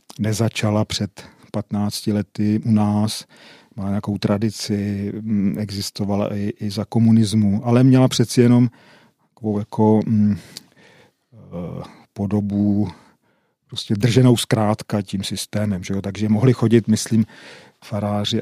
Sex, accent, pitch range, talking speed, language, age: male, native, 100-115 Hz, 110 wpm, Czech, 40-59